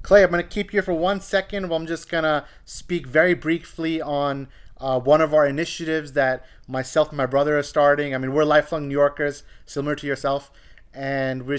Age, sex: 30-49, male